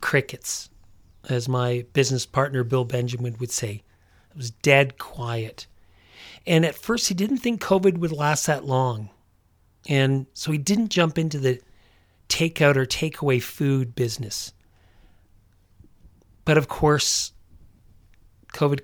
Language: English